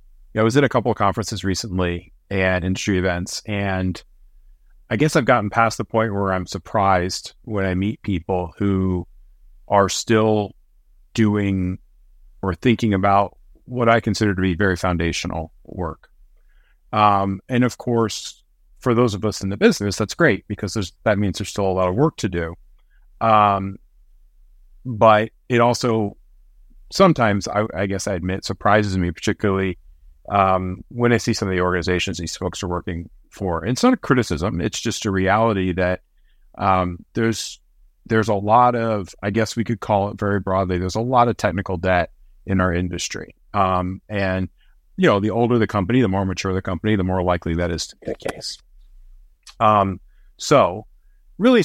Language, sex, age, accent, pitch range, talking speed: English, male, 40-59, American, 90-110 Hz, 170 wpm